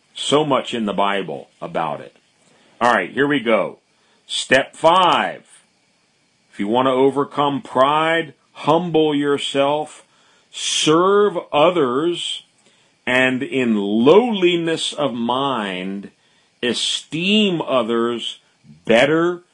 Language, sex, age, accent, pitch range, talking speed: English, male, 50-69, American, 115-160 Hz, 100 wpm